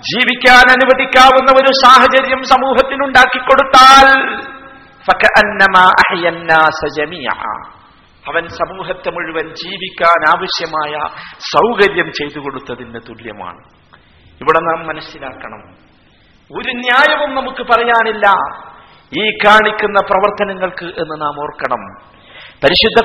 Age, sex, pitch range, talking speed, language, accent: 50-69, male, 185-260 Hz, 75 wpm, Malayalam, native